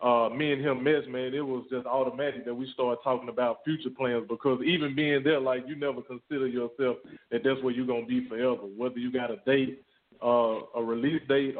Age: 20-39